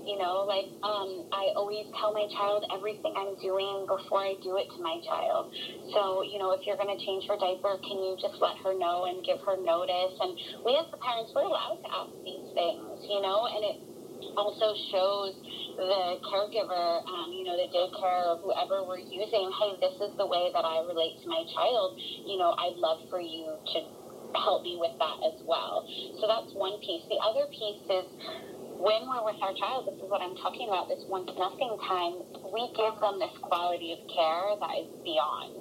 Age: 30-49